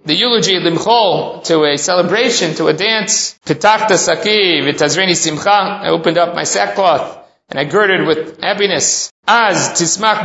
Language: English